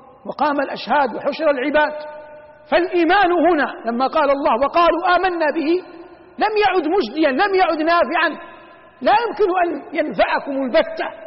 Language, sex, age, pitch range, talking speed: Arabic, male, 50-69, 235-320 Hz, 120 wpm